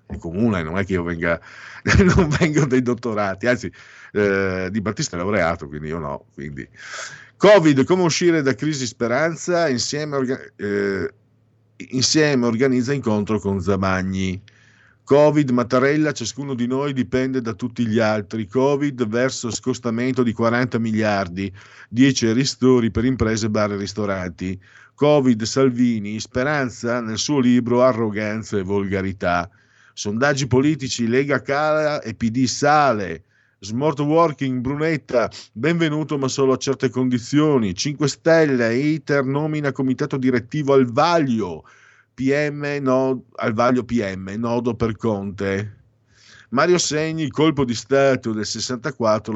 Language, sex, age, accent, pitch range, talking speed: Italian, male, 50-69, native, 105-140 Hz, 130 wpm